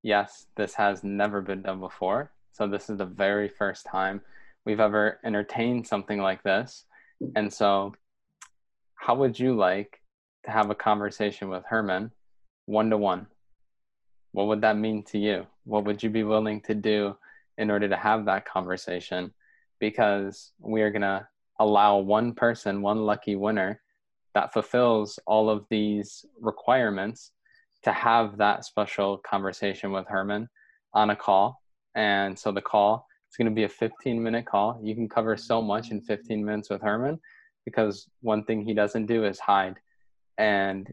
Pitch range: 100-110 Hz